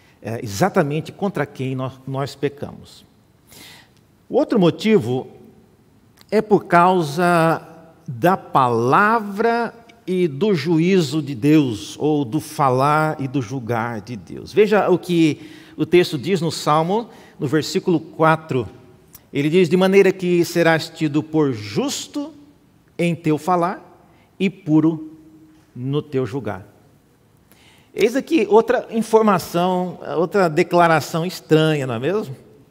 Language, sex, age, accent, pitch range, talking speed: Portuguese, male, 50-69, Brazilian, 140-180 Hz, 120 wpm